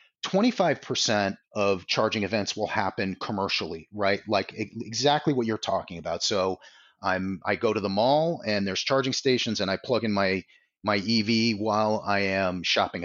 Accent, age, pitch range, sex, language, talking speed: American, 30-49, 100-130 Hz, male, English, 165 wpm